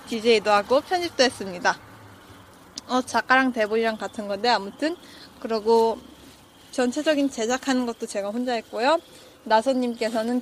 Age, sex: 20-39, female